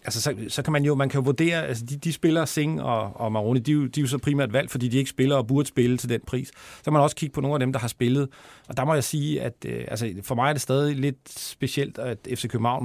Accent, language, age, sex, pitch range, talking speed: native, Danish, 40-59, male, 120-140 Hz, 300 wpm